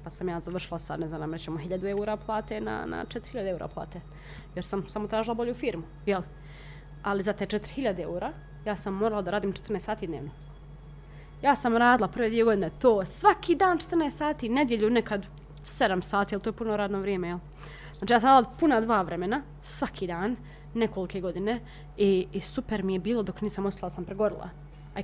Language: Croatian